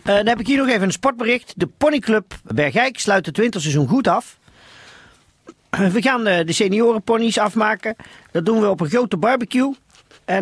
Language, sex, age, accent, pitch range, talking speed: Dutch, male, 40-59, Dutch, 160-215 Hz, 180 wpm